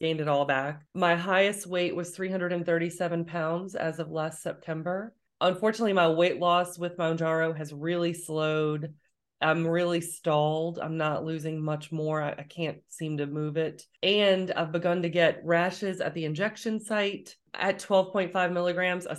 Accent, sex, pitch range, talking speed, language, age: American, female, 155-180 Hz, 160 wpm, English, 30-49